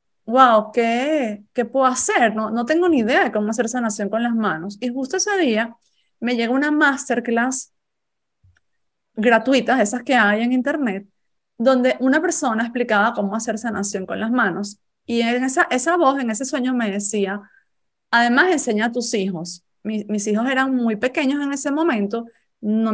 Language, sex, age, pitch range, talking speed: Spanish, female, 30-49, 220-270 Hz, 175 wpm